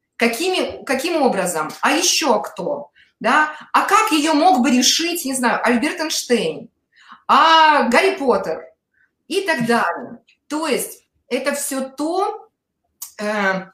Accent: native